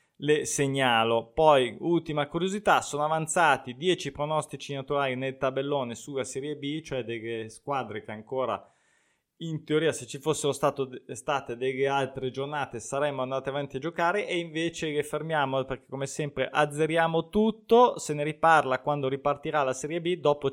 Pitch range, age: 125-145 Hz, 20-39